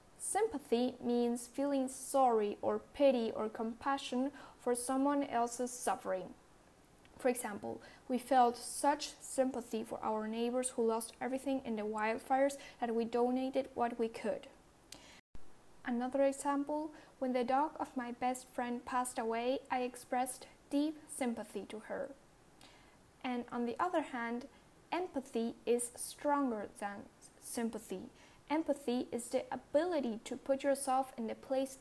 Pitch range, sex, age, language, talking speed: 235-270 Hz, female, 10-29, English, 130 wpm